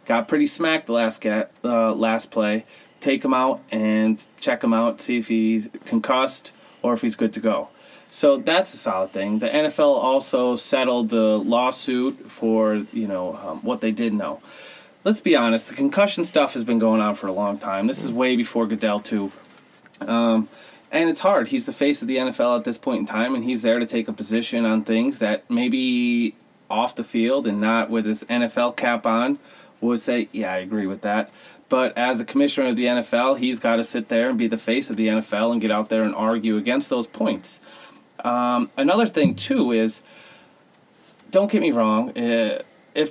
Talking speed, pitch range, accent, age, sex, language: 205 wpm, 115-180 Hz, American, 30-49, male, English